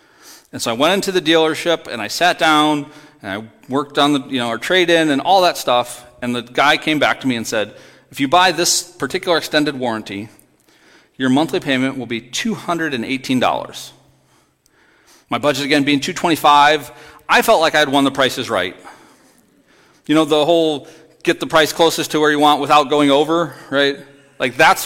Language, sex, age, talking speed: English, male, 40-59, 190 wpm